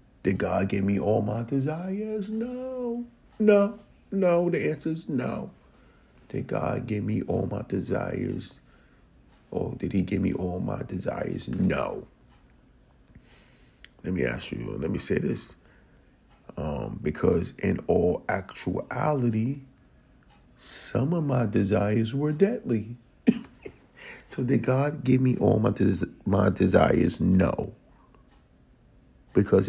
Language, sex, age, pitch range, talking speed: English, male, 40-59, 105-155 Hz, 125 wpm